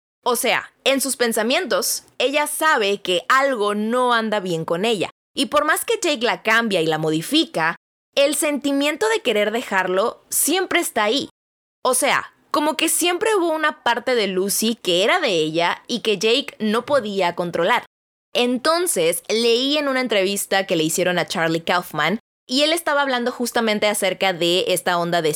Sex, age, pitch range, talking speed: female, 20-39, 185-285 Hz, 175 wpm